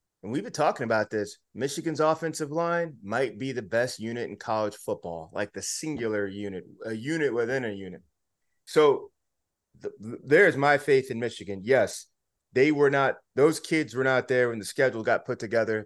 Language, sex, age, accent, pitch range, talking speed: English, male, 30-49, American, 110-140 Hz, 185 wpm